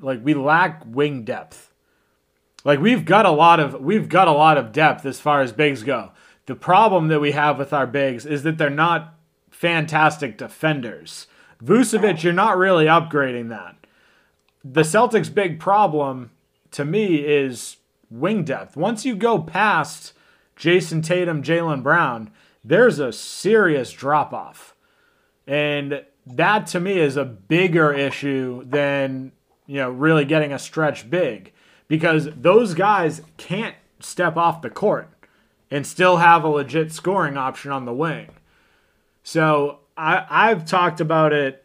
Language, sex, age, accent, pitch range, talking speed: English, male, 30-49, American, 140-170 Hz, 150 wpm